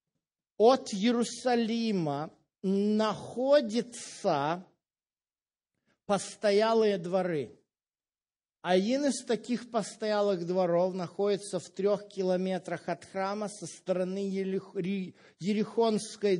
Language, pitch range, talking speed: Russian, 175-220 Hz, 70 wpm